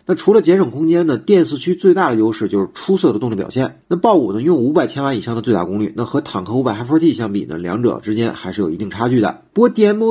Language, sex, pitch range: Chinese, male, 110-175 Hz